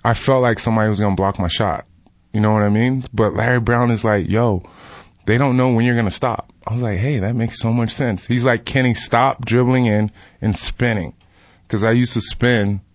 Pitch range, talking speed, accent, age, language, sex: 100-125 Hz, 240 wpm, American, 20-39, English, male